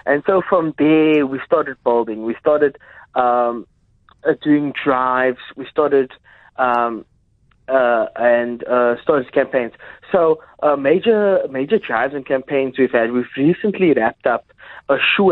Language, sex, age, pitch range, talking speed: English, male, 30-49, 120-155 Hz, 140 wpm